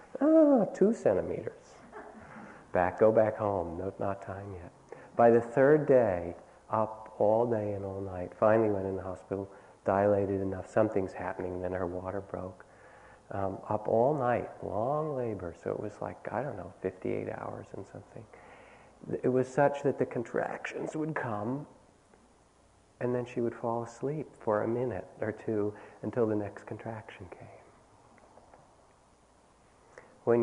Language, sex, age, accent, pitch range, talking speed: English, male, 50-69, American, 100-125 Hz, 150 wpm